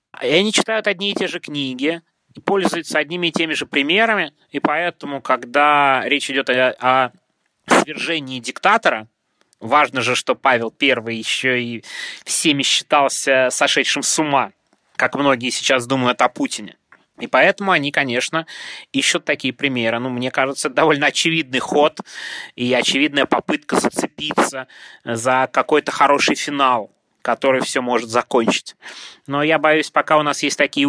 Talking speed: 140 wpm